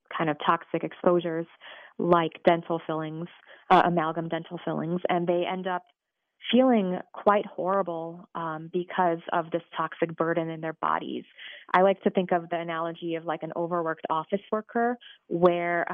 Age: 20-39